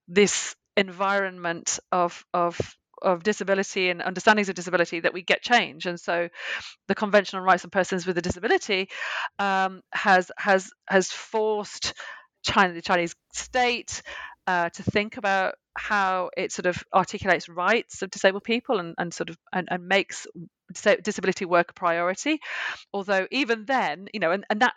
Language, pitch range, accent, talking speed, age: English, 175-210 Hz, British, 160 wpm, 40-59